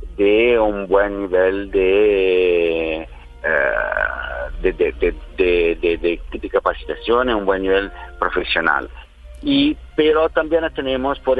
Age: 50-69